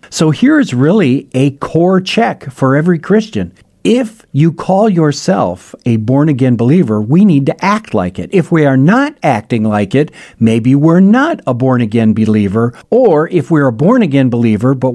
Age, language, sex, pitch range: 50-69, English, male, 130-195 Hz